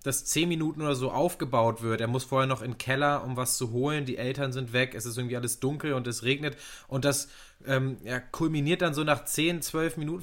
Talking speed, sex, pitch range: 240 wpm, male, 135-175 Hz